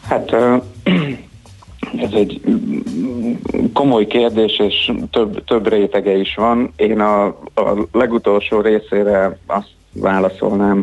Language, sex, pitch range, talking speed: Hungarian, male, 100-115 Hz, 100 wpm